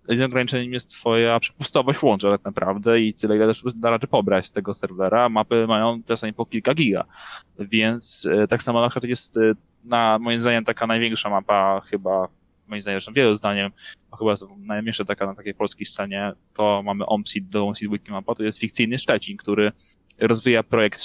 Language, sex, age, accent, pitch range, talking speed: Polish, male, 20-39, native, 100-115 Hz, 180 wpm